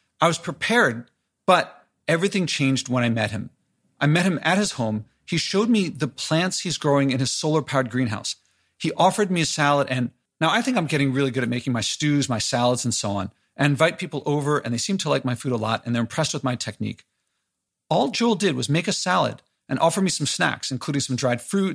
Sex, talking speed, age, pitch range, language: male, 230 wpm, 40-59, 125-165 Hz, English